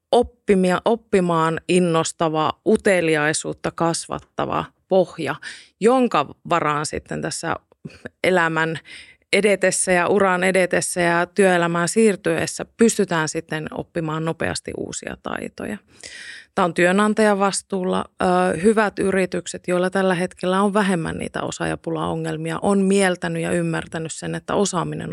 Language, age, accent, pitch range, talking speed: Finnish, 30-49, native, 165-200 Hz, 105 wpm